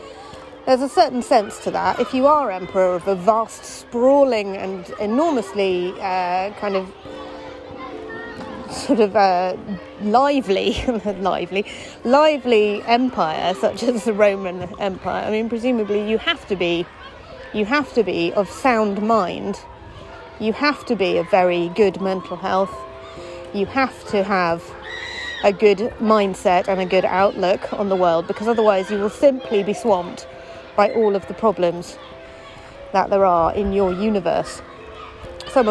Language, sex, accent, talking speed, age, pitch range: English, female, British, 145 wpm, 30-49, 190-235 Hz